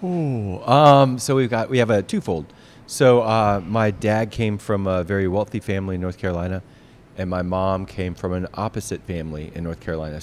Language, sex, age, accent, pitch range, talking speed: English, male, 30-49, American, 90-110 Hz, 195 wpm